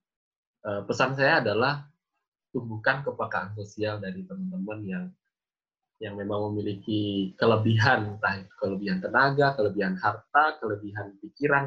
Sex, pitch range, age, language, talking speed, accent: male, 105-130 Hz, 20-39, Indonesian, 105 wpm, native